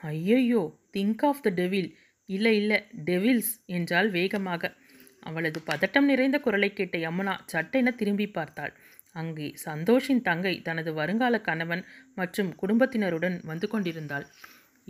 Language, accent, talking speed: Tamil, native, 115 wpm